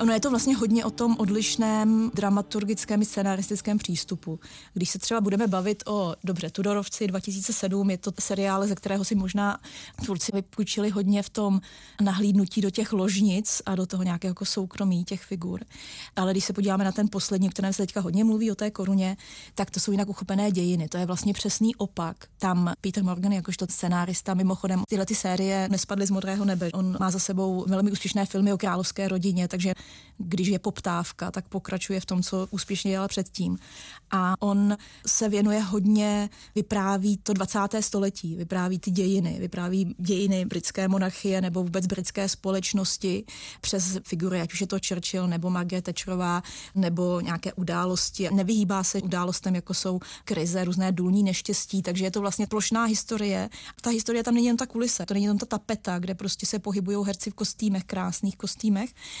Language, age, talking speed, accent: Czech, 20-39, 180 wpm, native